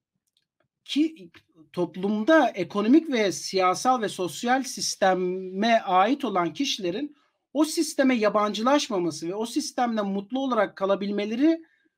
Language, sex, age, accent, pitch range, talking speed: Turkish, male, 40-59, native, 210-300 Hz, 100 wpm